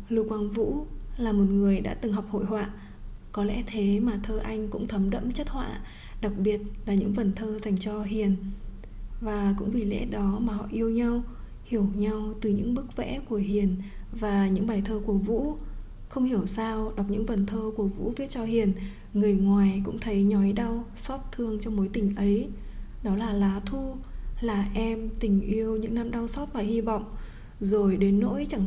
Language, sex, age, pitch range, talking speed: Vietnamese, female, 20-39, 200-230 Hz, 205 wpm